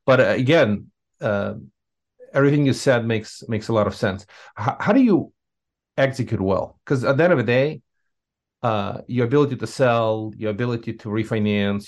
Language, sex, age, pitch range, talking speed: English, male, 40-59, 105-125 Hz, 170 wpm